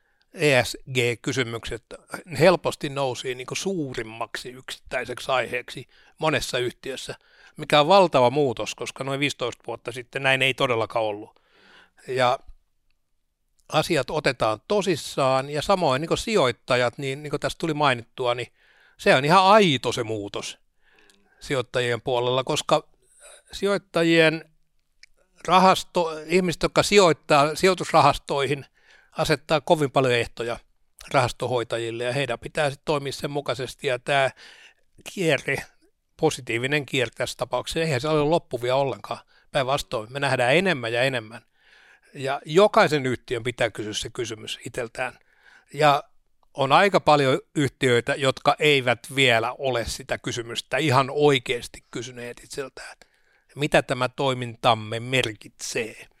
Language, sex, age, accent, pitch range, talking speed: Finnish, male, 60-79, native, 120-155 Hz, 115 wpm